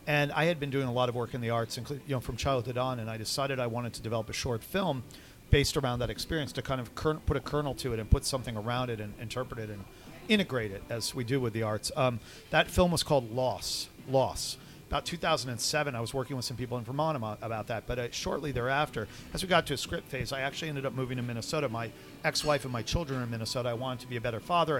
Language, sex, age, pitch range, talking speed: English, male, 40-59, 120-145 Hz, 260 wpm